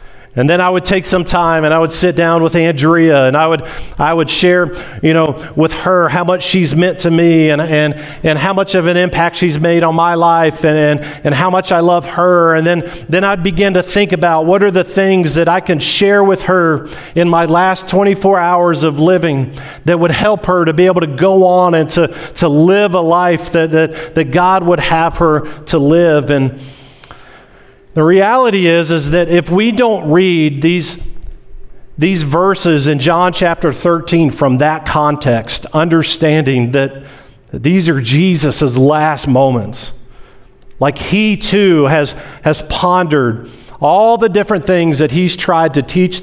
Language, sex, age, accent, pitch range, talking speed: English, male, 40-59, American, 150-180 Hz, 185 wpm